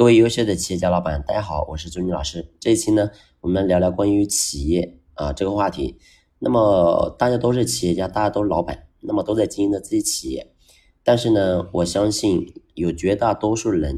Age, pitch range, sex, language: 30-49, 85-105 Hz, male, Chinese